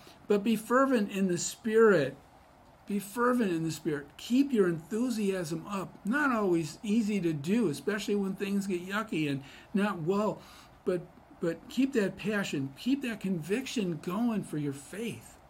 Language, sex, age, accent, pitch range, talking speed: English, male, 50-69, American, 135-195 Hz, 155 wpm